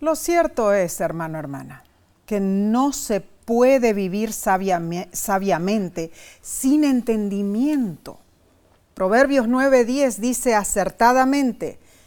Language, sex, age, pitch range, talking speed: Spanish, female, 40-59, 185-255 Hz, 95 wpm